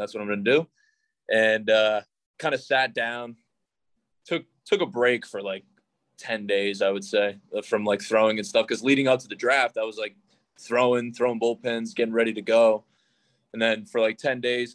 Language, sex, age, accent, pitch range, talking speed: English, male, 20-39, American, 105-120 Hz, 200 wpm